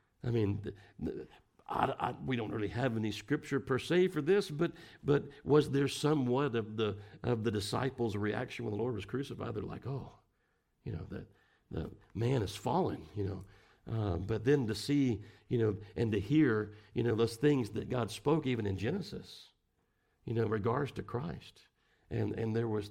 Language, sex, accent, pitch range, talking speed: English, male, American, 105-130 Hz, 185 wpm